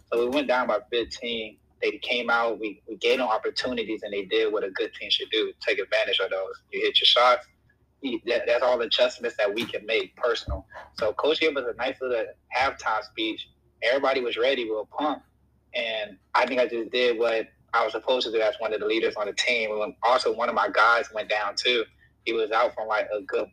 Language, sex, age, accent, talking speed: English, male, 20-39, American, 240 wpm